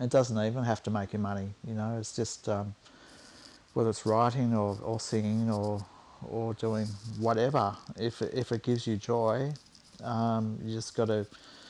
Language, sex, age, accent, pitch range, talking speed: English, male, 40-59, Australian, 110-120 Hz, 175 wpm